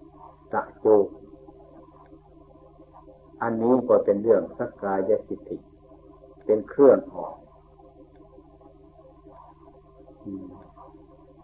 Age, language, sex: 60-79, Thai, male